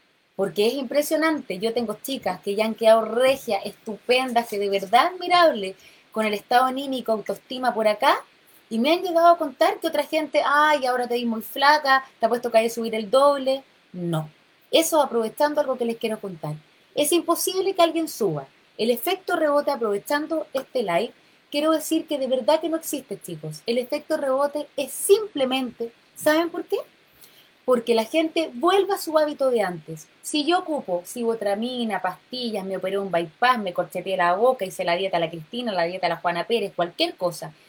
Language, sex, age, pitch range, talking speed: Spanish, female, 20-39, 210-310 Hz, 190 wpm